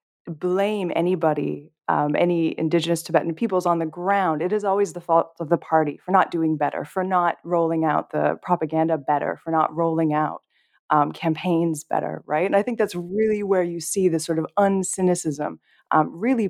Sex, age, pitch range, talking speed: female, 20-39, 160-190 Hz, 185 wpm